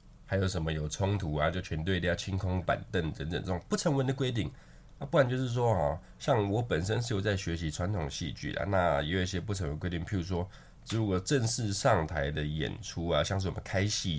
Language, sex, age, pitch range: Chinese, male, 20-39, 80-110 Hz